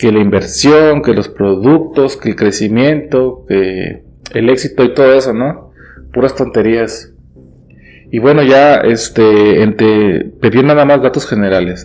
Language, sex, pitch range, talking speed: Spanish, male, 95-140 Hz, 135 wpm